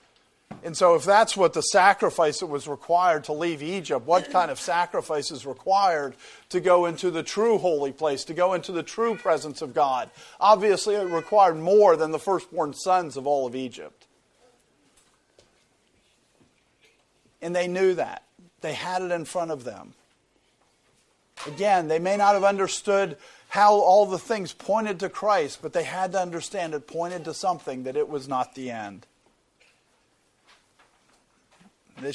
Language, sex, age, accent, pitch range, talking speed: English, male, 50-69, American, 165-205 Hz, 160 wpm